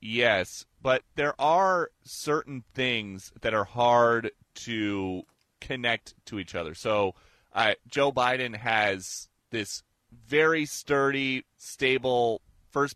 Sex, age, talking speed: male, 30-49, 110 wpm